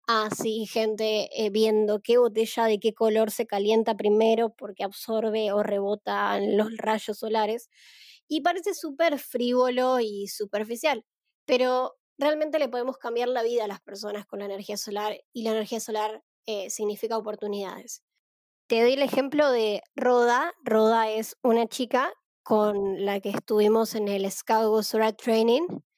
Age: 20-39